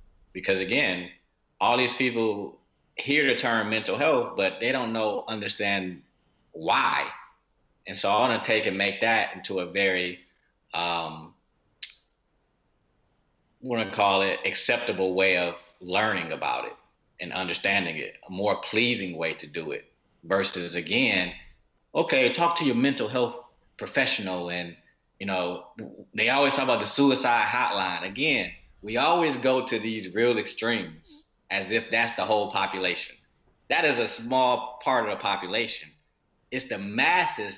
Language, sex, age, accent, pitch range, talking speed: English, male, 30-49, American, 90-115 Hz, 150 wpm